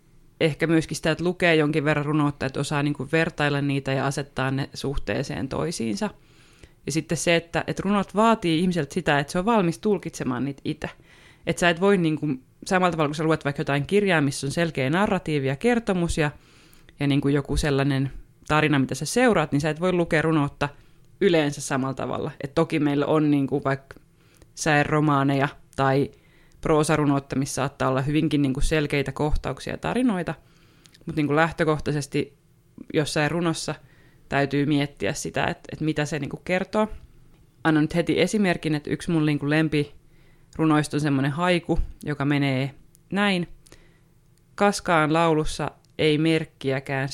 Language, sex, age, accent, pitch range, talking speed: Finnish, female, 20-39, native, 140-165 Hz, 150 wpm